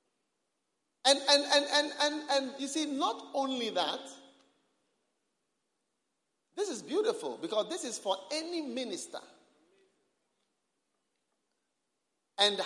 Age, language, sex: 50-69, English, male